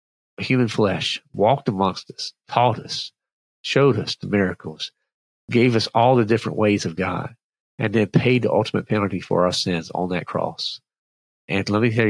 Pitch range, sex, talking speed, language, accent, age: 95-115 Hz, male, 175 wpm, English, American, 50-69